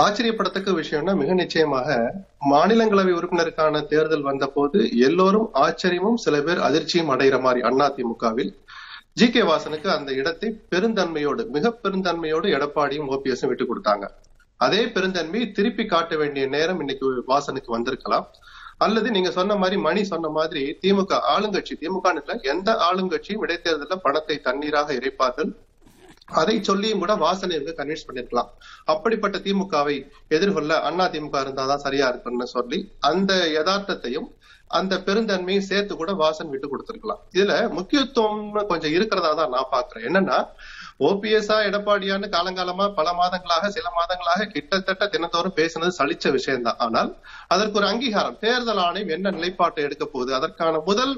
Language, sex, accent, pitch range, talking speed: Tamil, male, native, 155-205 Hz, 130 wpm